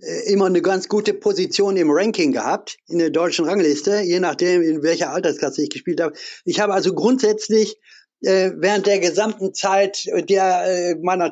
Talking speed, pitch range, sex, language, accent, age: 165 wpm, 155-200 Hz, male, German, German, 60-79